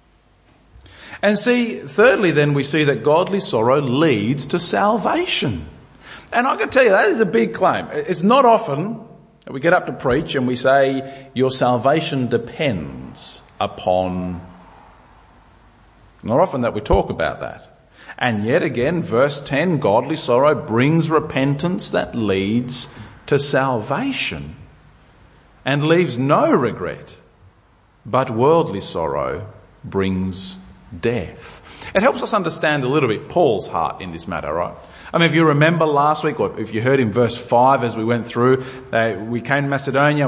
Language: English